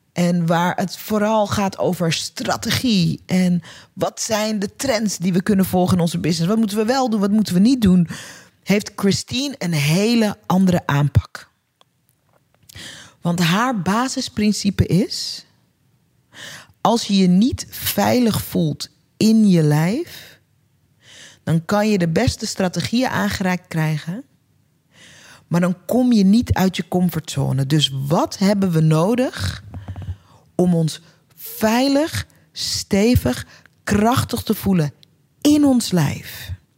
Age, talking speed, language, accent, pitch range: 40-59, 130 wpm, Dutch, Dutch, 160-205 Hz